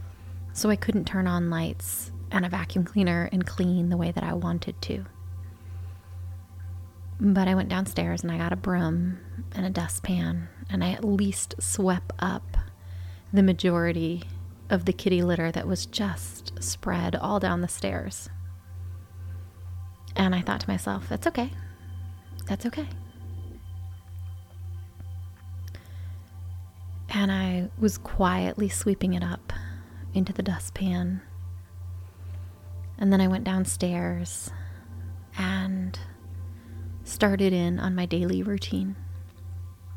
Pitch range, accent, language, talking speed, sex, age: 90-95 Hz, American, English, 120 wpm, female, 30-49